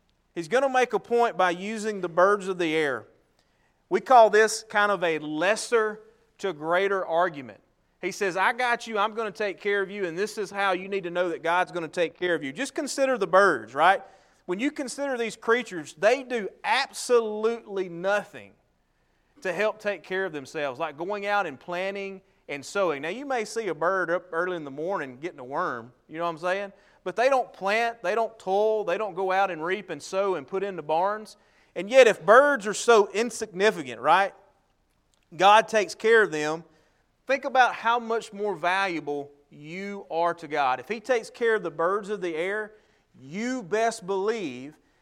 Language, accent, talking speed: English, American, 205 wpm